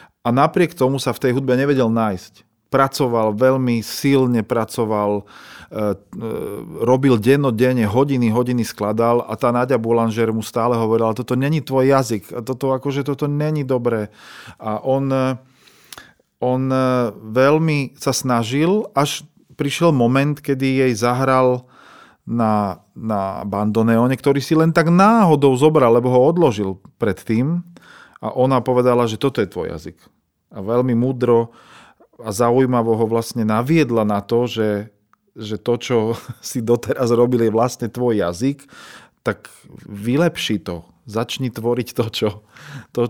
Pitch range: 115-140 Hz